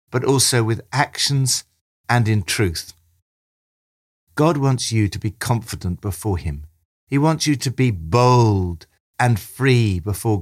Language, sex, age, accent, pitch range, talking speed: English, male, 60-79, British, 85-120 Hz, 140 wpm